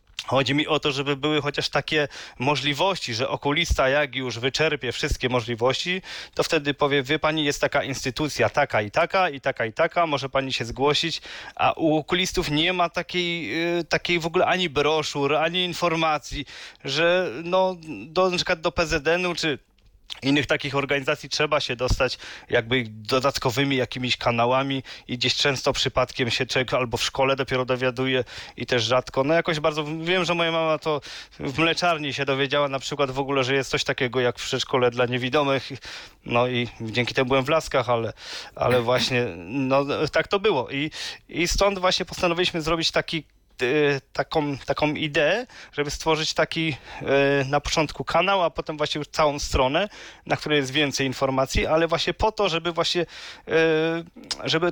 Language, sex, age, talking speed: Polish, male, 20-39, 165 wpm